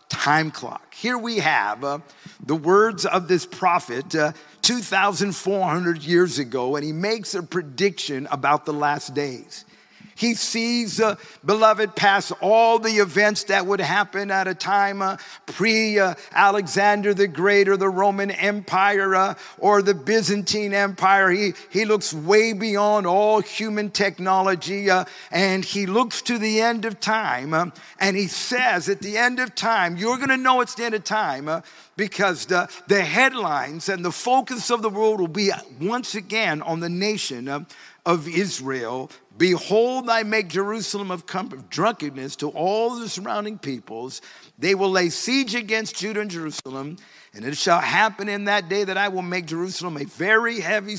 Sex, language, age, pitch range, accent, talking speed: male, English, 50-69, 170-215 Hz, American, 170 wpm